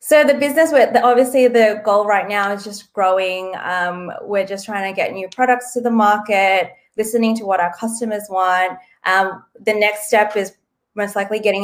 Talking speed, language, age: 185 wpm, English, 20-39